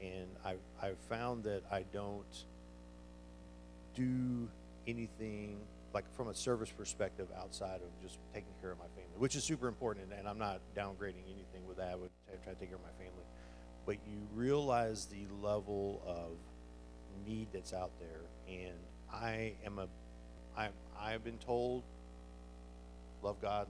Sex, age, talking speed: male, 50-69, 160 wpm